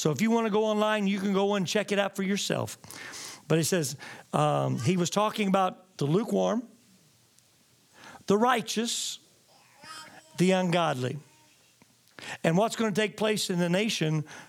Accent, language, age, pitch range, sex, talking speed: American, English, 50-69, 170-225 Hz, male, 160 wpm